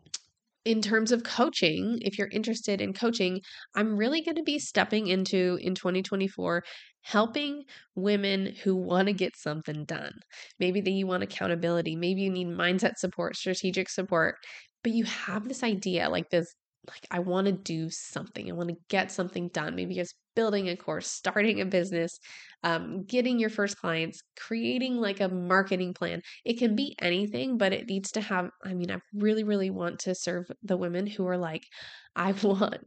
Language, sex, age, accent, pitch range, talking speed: English, female, 20-39, American, 175-215 Hz, 180 wpm